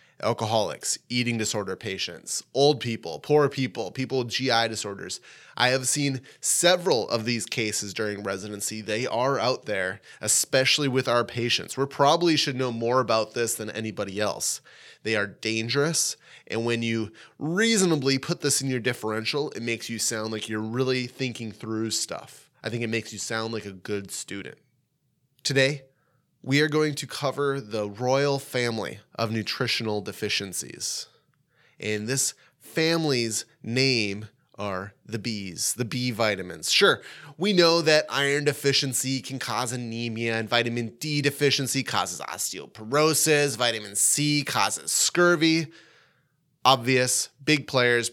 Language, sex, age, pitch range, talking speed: English, male, 20-39, 110-140 Hz, 145 wpm